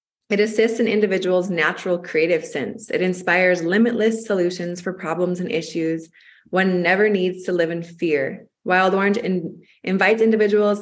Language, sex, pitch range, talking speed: English, female, 165-205 Hz, 145 wpm